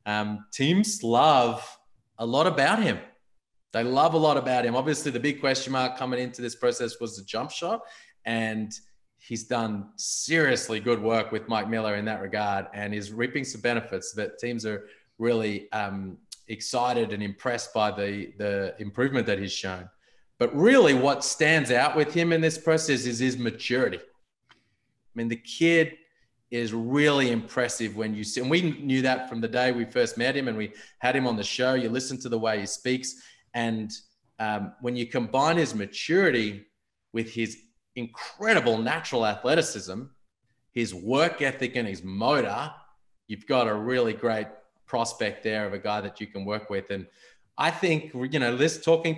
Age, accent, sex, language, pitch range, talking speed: 30-49, Australian, male, English, 110-135 Hz, 180 wpm